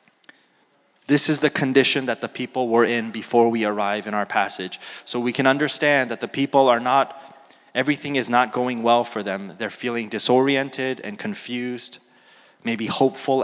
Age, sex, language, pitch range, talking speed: 20-39, male, English, 115-135 Hz, 170 wpm